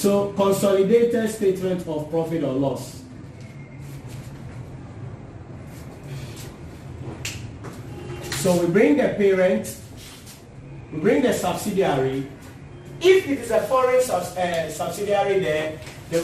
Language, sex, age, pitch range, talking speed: English, male, 40-59, 130-200 Hz, 90 wpm